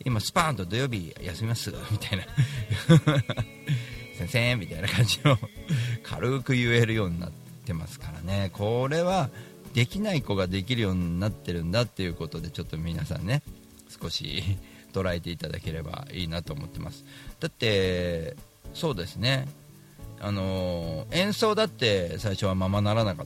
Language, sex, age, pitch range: Japanese, male, 40-59, 95-135 Hz